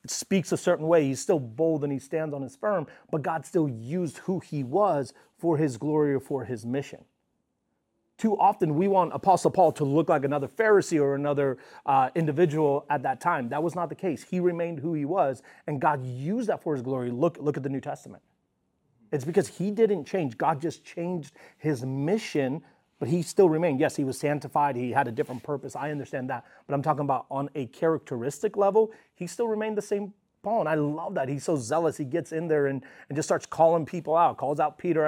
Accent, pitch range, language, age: American, 135-170 Hz, English, 30-49